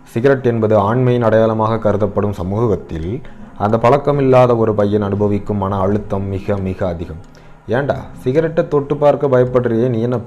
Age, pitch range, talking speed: 20-39, 100-115 Hz, 135 wpm